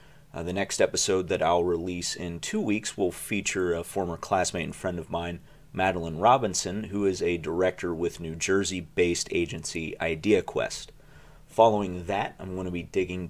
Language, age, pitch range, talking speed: English, 30-49, 85-110 Hz, 165 wpm